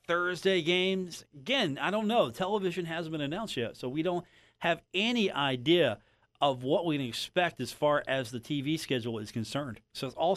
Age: 40-59